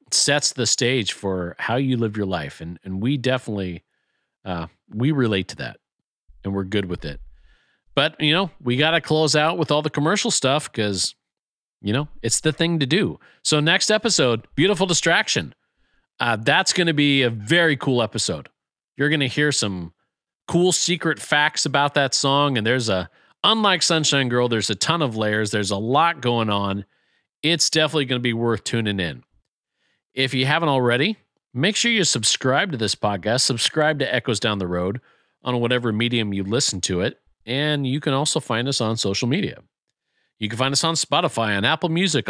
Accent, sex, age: American, male, 40-59